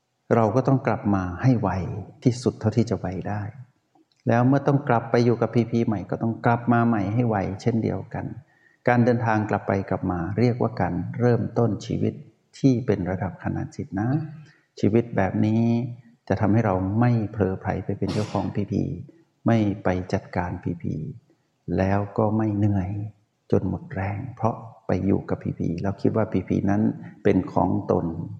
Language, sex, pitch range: Thai, male, 95-120 Hz